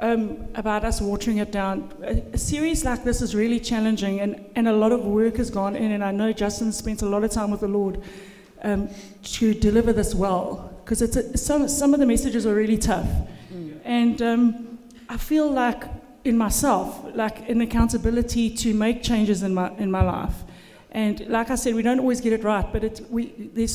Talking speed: 205 wpm